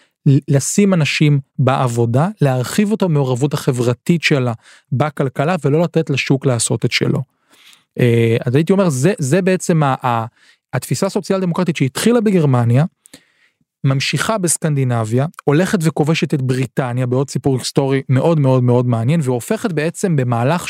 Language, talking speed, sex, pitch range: Hebrew, 130 wpm, male, 130-170 Hz